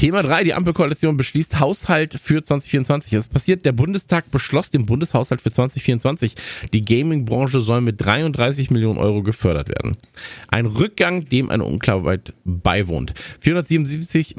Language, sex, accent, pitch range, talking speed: German, male, German, 105-135 Hz, 140 wpm